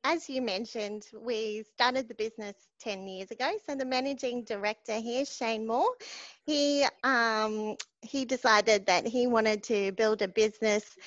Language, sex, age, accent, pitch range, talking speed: English, female, 30-49, Australian, 205-255 Hz, 150 wpm